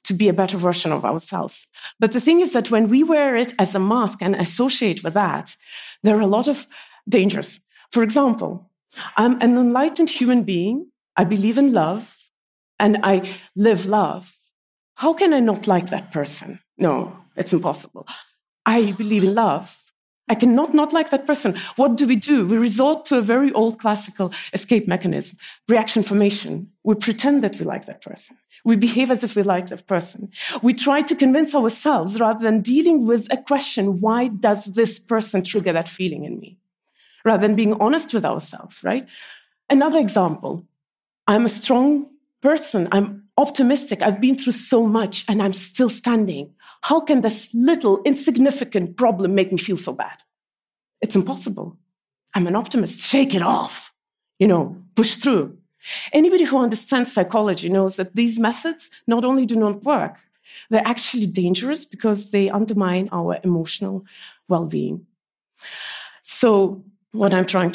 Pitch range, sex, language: 195-255 Hz, female, English